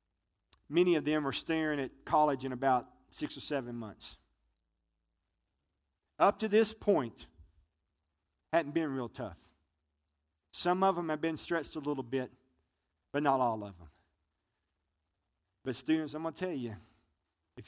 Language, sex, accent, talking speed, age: English, male, American, 145 wpm, 40-59